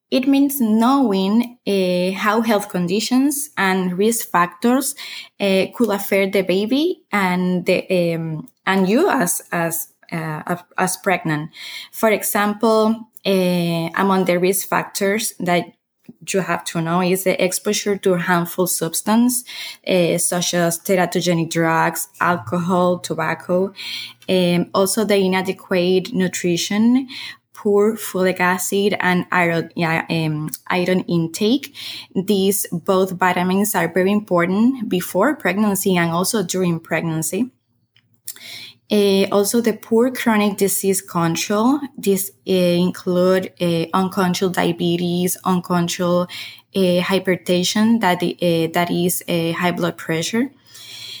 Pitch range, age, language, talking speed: 175-205 Hz, 20-39, English, 120 wpm